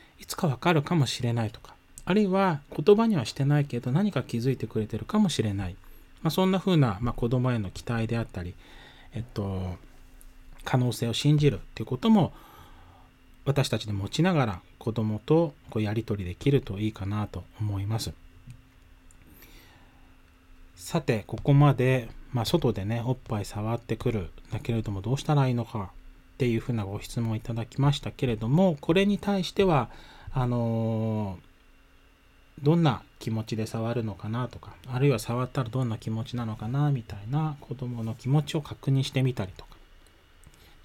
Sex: male